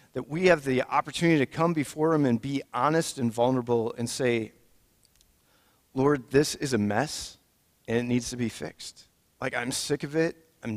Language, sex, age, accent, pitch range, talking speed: English, male, 40-59, American, 115-145 Hz, 185 wpm